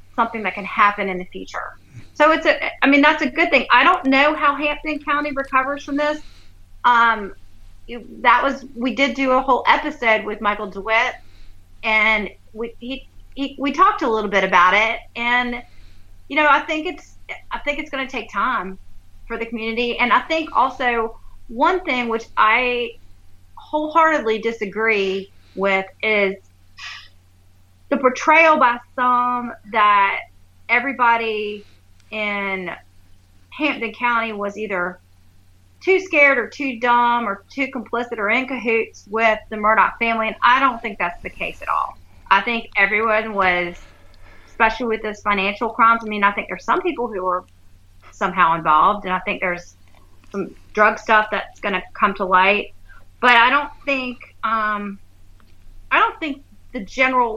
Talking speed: 155 wpm